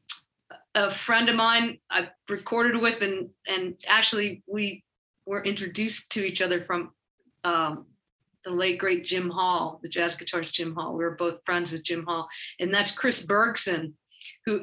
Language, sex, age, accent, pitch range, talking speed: English, female, 40-59, American, 180-215 Hz, 165 wpm